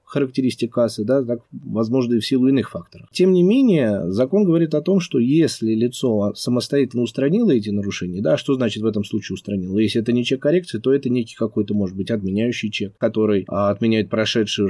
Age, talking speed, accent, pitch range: 20-39, 180 wpm, native, 105-145 Hz